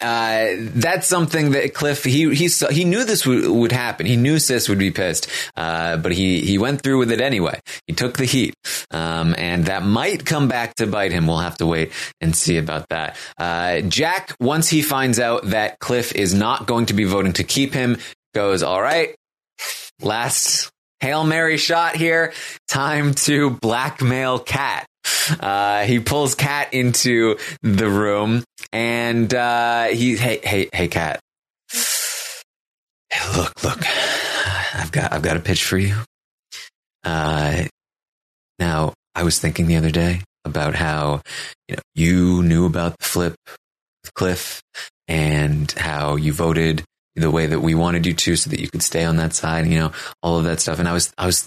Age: 20-39